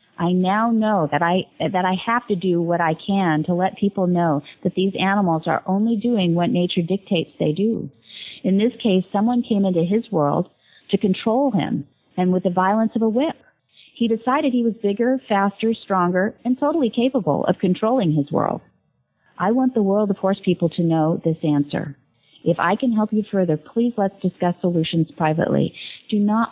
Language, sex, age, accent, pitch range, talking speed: English, female, 40-59, American, 165-210 Hz, 190 wpm